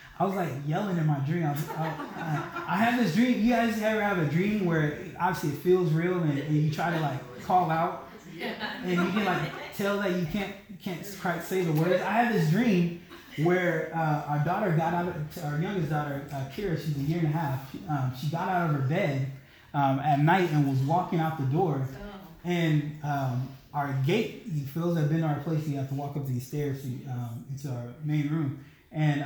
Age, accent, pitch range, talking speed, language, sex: 20-39, American, 145-190 Hz, 230 wpm, English, male